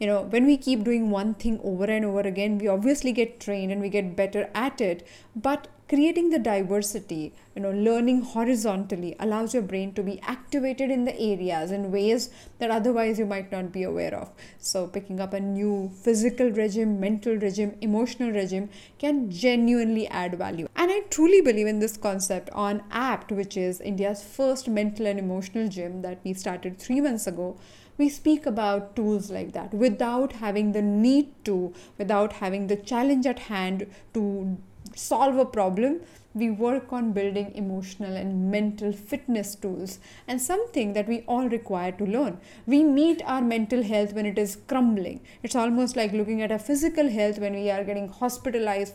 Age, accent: 20-39, Indian